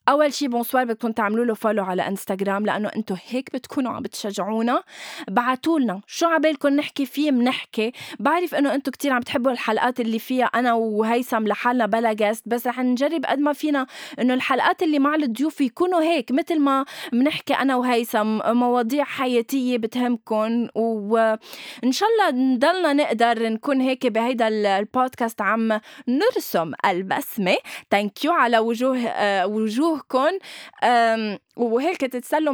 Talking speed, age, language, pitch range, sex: 135 wpm, 20-39, Arabic, 220-280 Hz, female